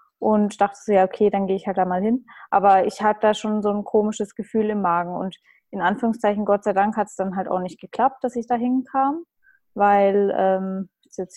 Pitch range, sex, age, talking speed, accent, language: 185-215 Hz, female, 20-39, 240 wpm, German, German